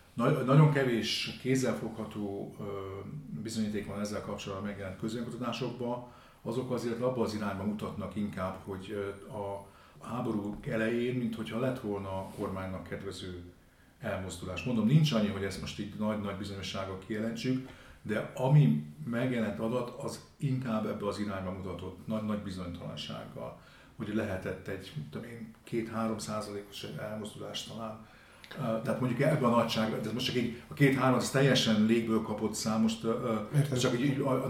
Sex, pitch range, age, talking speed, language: male, 100-120 Hz, 50-69, 130 wpm, Hungarian